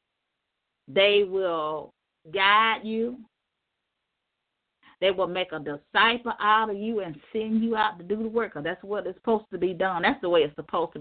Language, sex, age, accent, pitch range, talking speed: English, female, 40-59, American, 170-220 Hz, 180 wpm